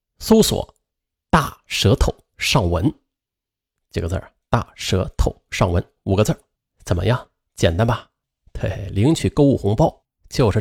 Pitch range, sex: 95-135 Hz, male